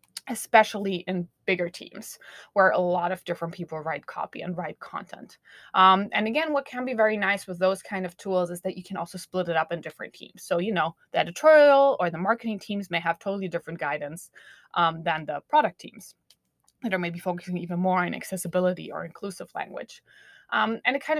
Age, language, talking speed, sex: 20-39, English, 205 wpm, female